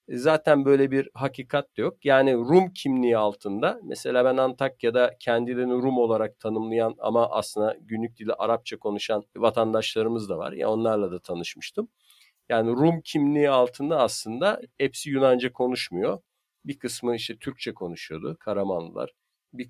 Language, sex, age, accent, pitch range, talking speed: Turkish, male, 50-69, native, 110-145 Hz, 140 wpm